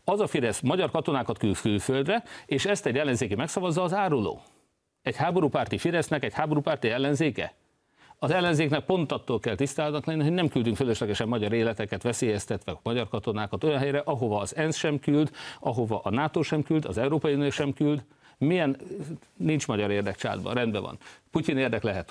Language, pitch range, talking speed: Hungarian, 105-140 Hz, 170 wpm